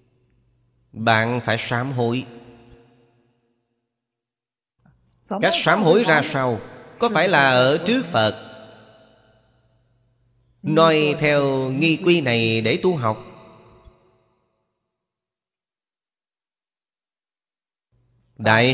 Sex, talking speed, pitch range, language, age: male, 75 wpm, 110-130 Hz, Vietnamese, 30-49